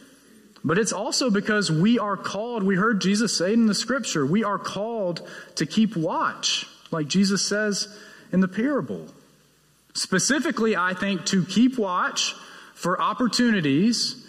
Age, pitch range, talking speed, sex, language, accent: 30-49, 155-220 Hz, 145 wpm, male, English, American